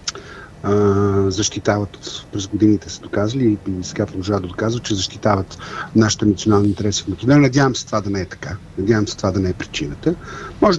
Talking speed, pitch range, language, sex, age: 180 wpm, 100-135 Hz, Bulgarian, male, 50-69